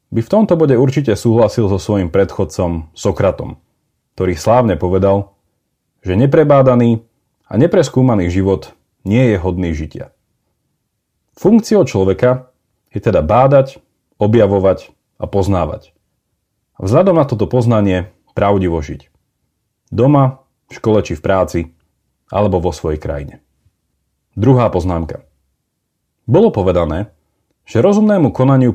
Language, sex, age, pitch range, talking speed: Slovak, male, 30-49, 95-130 Hz, 110 wpm